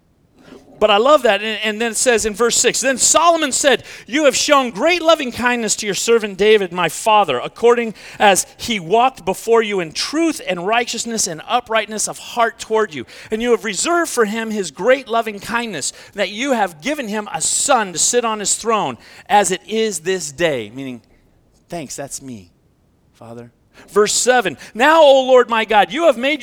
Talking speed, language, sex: 190 wpm, English, male